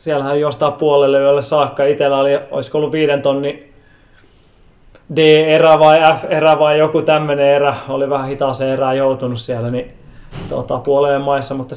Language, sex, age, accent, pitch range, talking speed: Finnish, male, 20-39, native, 135-155 Hz, 150 wpm